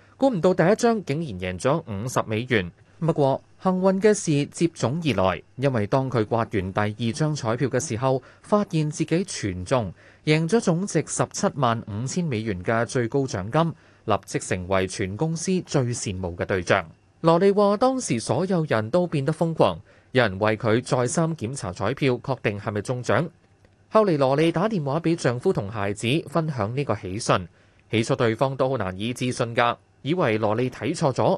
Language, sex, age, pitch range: Chinese, male, 20-39, 110-160 Hz